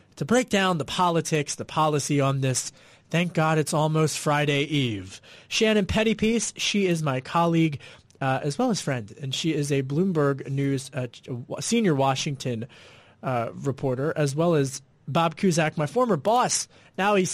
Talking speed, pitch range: 165 wpm, 145-185 Hz